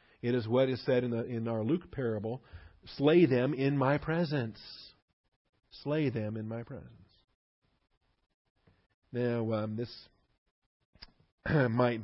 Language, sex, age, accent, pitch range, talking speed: English, male, 40-59, American, 110-125 Hz, 125 wpm